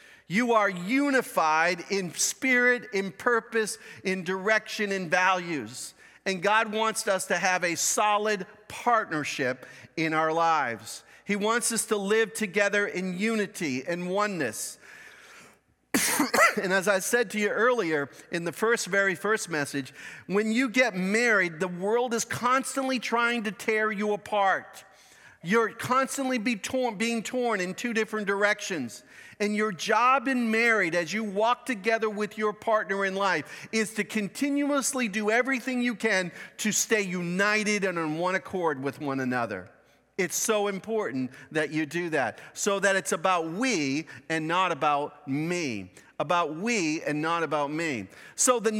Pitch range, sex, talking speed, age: 175-230 Hz, male, 150 wpm, 50-69